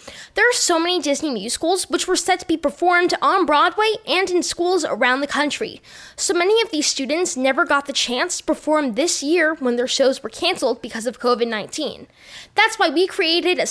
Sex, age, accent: female, 10-29, American